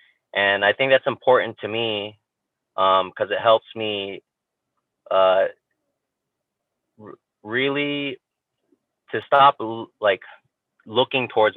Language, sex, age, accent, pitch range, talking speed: English, male, 30-49, American, 95-115 Hz, 100 wpm